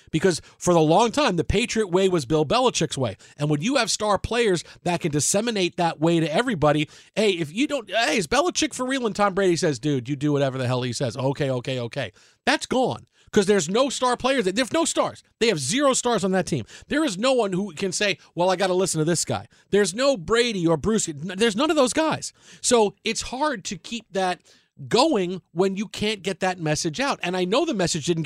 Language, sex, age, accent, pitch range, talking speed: English, male, 40-59, American, 155-215 Hz, 235 wpm